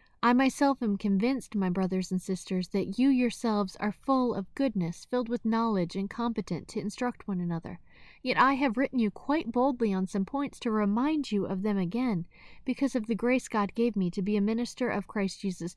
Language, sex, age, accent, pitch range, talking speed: English, female, 30-49, American, 195-250 Hz, 205 wpm